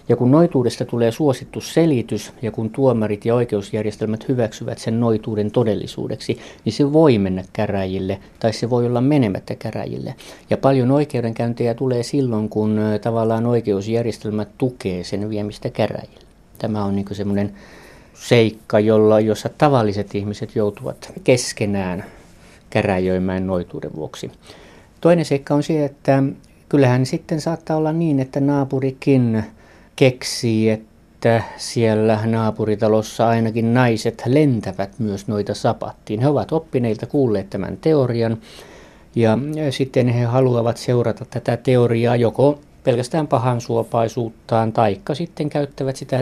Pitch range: 105-130 Hz